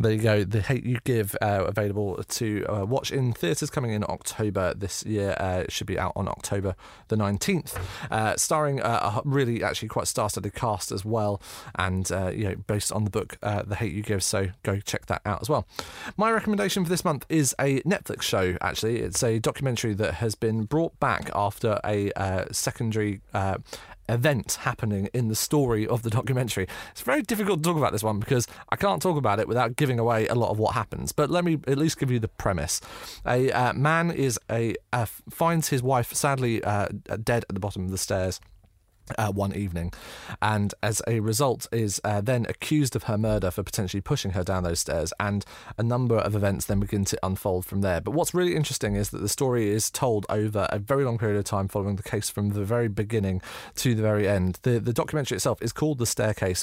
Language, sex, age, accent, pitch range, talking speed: English, male, 30-49, British, 100-125 Hz, 220 wpm